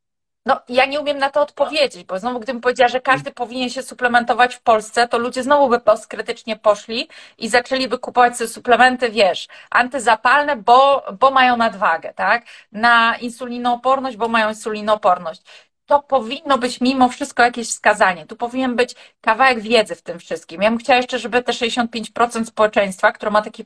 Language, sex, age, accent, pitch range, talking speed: Polish, female, 30-49, native, 220-265 Hz, 170 wpm